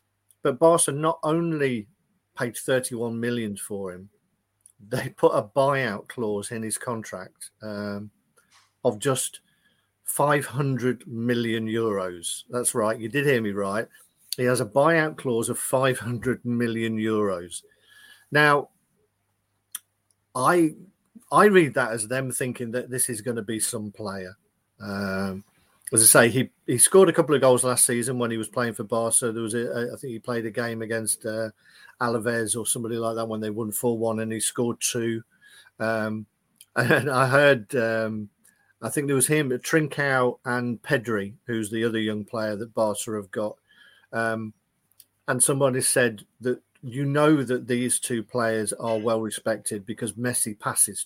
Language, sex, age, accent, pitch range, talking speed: English, male, 50-69, British, 110-130 Hz, 160 wpm